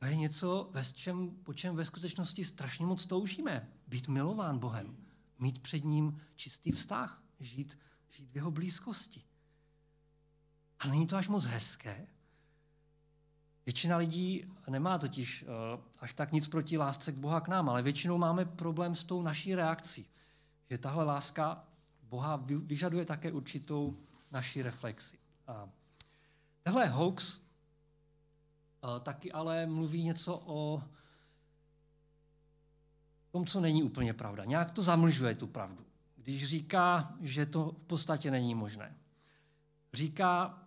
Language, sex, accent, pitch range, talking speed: Czech, male, native, 140-165 Hz, 125 wpm